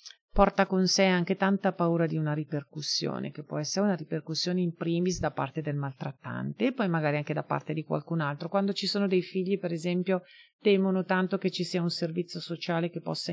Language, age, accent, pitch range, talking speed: Italian, 40-59, native, 160-190 Hz, 205 wpm